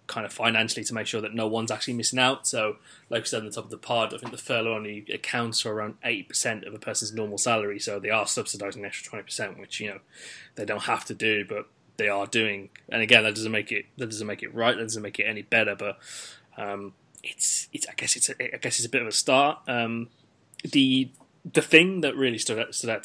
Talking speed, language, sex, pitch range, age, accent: 260 wpm, English, male, 110-125 Hz, 20-39, British